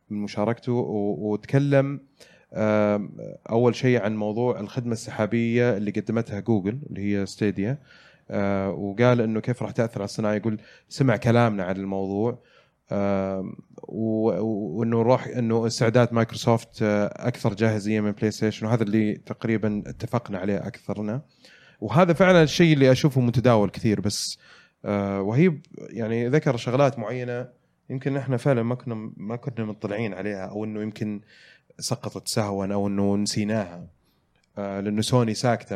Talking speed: 130 wpm